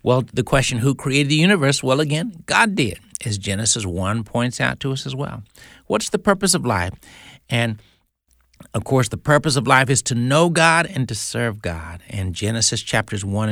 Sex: male